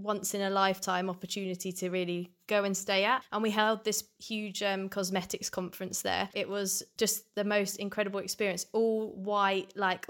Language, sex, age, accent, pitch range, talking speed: English, female, 20-39, British, 185-215 Hz, 180 wpm